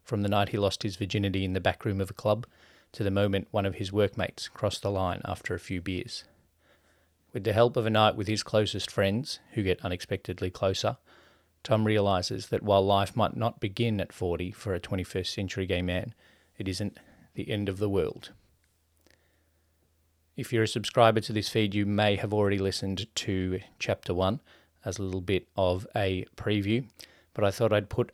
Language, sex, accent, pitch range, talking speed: English, male, Australian, 95-110 Hz, 195 wpm